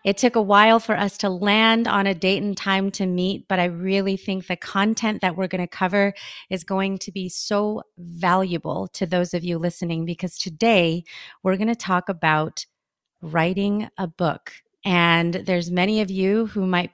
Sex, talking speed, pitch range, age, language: female, 190 wpm, 180-210 Hz, 30-49, English